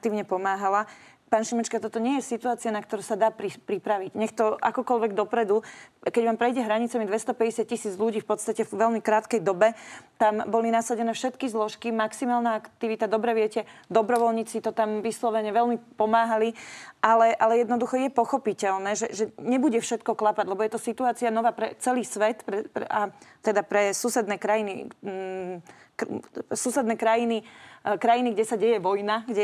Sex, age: female, 30-49